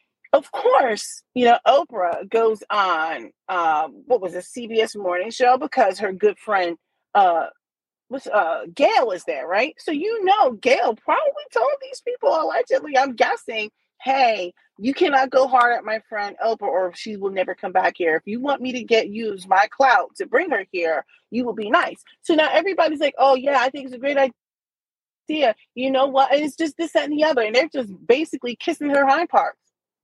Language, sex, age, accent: English, female, 30-49, American